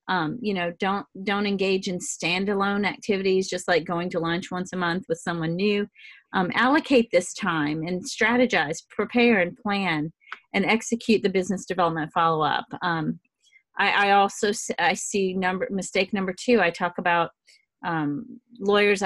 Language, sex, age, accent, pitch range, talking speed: English, female, 40-59, American, 175-220 Hz, 160 wpm